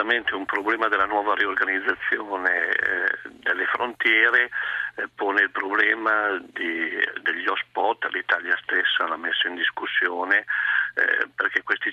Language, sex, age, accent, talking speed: Italian, male, 50-69, native, 120 wpm